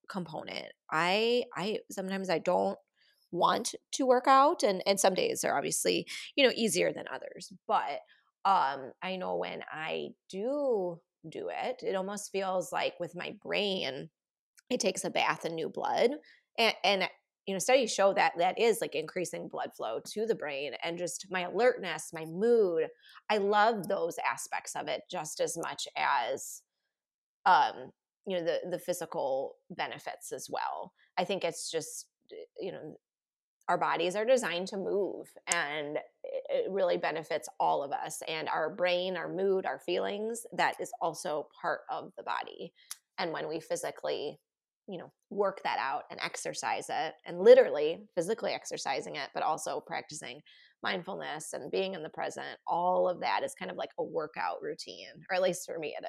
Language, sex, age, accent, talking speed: English, female, 20-39, American, 170 wpm